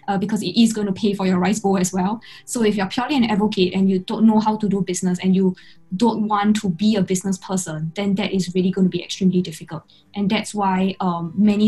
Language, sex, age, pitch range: English, female, 10-29, 185-210 Hz